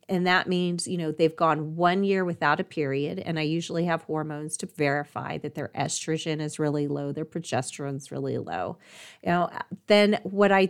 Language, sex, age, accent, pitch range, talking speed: English, female, 30-49, American, 165-210 Hz, 195 wpm